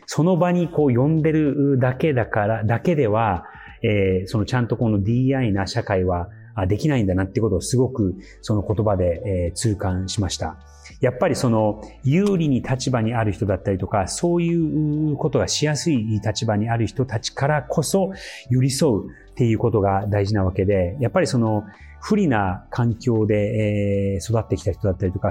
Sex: male